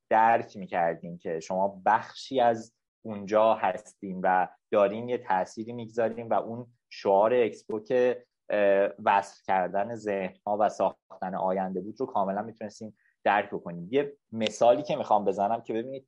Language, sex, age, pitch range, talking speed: Persian, male, 20-39, 100-140 Hz, 140 wpm